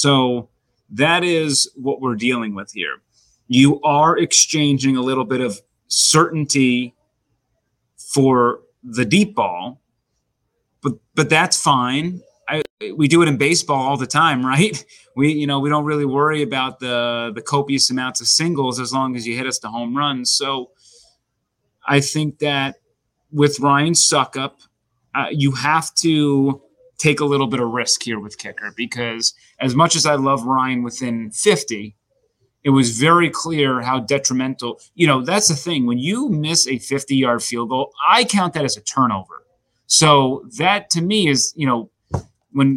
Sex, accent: male, American